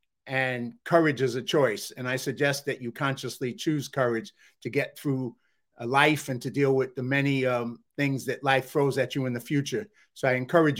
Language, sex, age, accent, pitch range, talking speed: English, male, 50-69, American, 125-140 Hz, 200 wpm